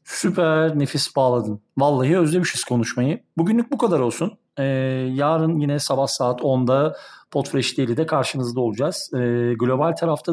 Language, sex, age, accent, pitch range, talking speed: Turkish, male, 40-59, native, 120-150 Hz, 135 wpm